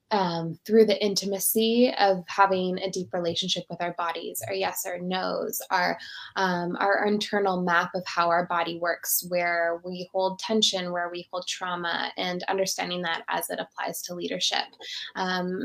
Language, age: English, 10-29